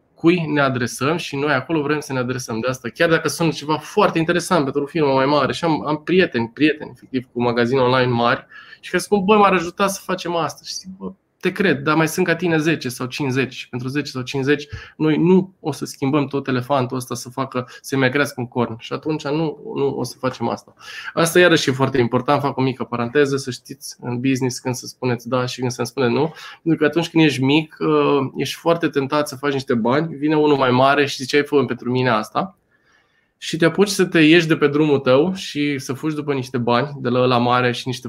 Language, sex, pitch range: Romanian, male, 125-150 Hz